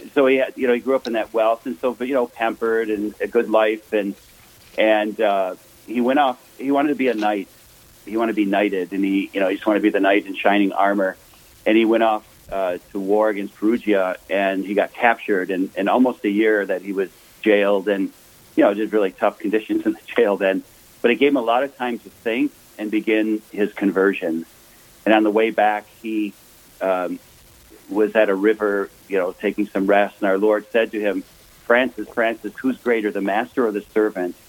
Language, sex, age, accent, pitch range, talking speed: English, male, 40-59, American, 100-115 Hz, 225 wpm